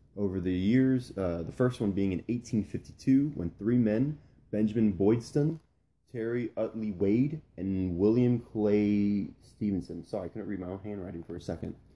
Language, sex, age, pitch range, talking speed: English, male, 20-39, 85-105 Hz, 160 wpm